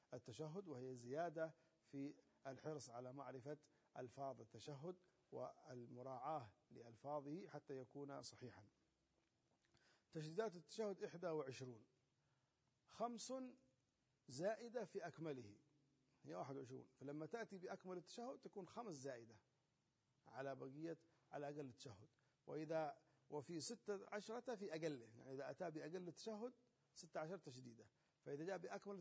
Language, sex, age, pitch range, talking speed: Arabic, male, 50-69, 135-175 Hz, 115 wpm